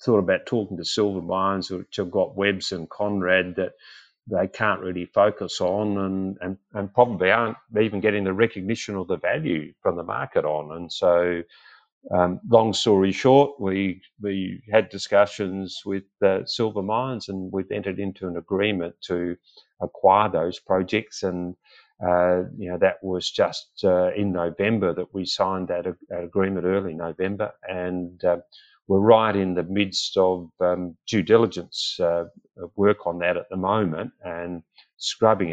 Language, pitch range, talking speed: English, 90-100 Hz, 165 wpm